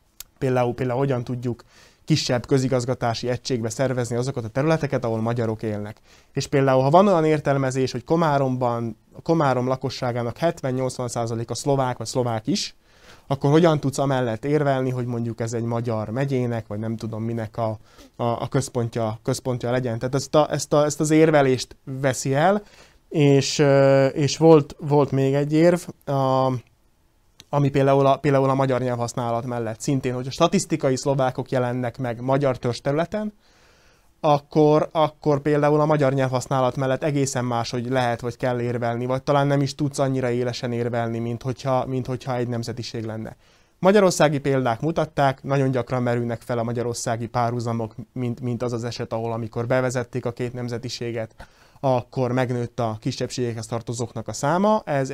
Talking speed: 160 wpm